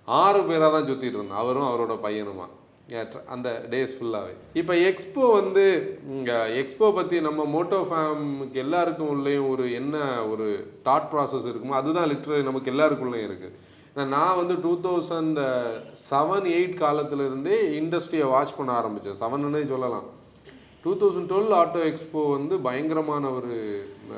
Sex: male